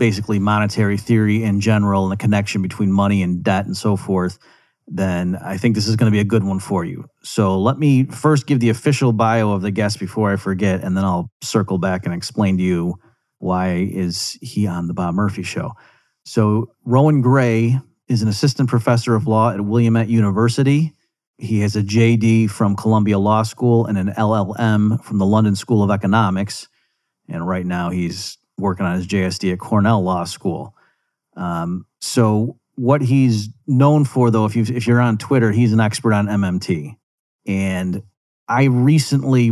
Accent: American